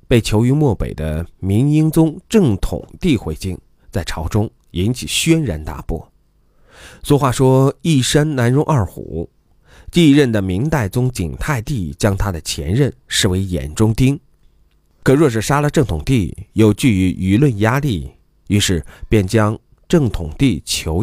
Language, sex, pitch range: Chinese, male, 85-135 Hz